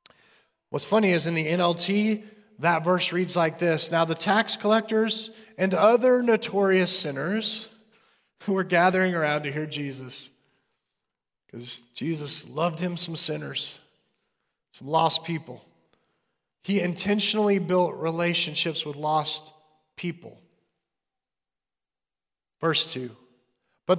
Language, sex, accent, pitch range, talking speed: English, male, American, 160-210 Hz, 115 wpm